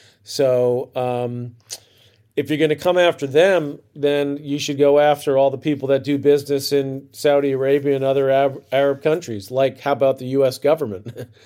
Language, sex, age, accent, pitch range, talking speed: English, male, 40-59, American, 120-140 Hz, 175 wpm